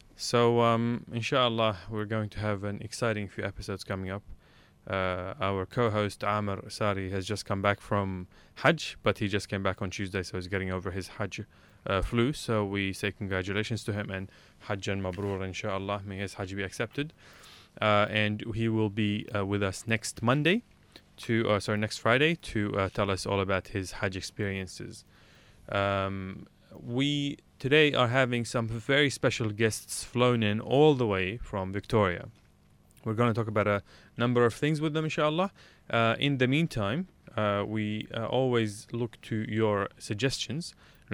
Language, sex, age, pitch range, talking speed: English, male, 20-39, 95-115 Hz, 170 wpm